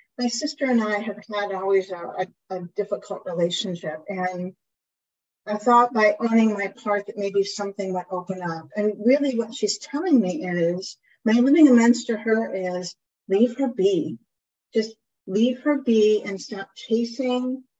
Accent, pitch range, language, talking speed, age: American, 195-245 Hz, English, 160 wpm, 50-69